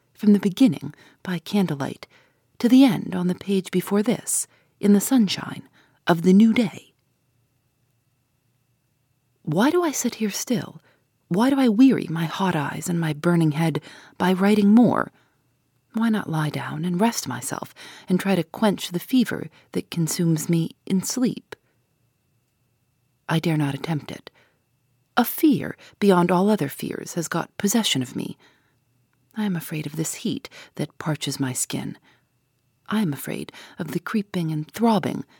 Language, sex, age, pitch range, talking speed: English, female, 40-59, 130-205 Hz, 155 wpm